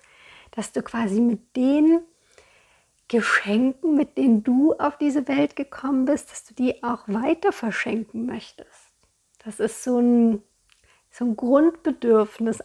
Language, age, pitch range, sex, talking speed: German, 50-69, 230-270 Hz, female, 130 wpm